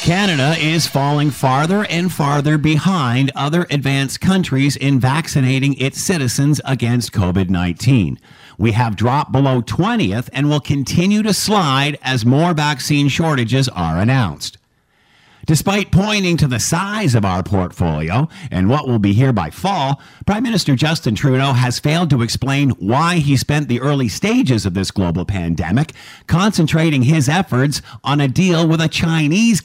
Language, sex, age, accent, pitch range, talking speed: English, male, 50-69, American, 120-165 Hz, 150 wpm